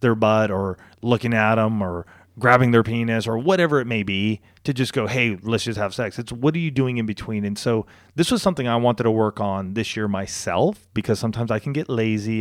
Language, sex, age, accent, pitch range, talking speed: English, male, 30-49, American, 100-130 Hz, 235 wpm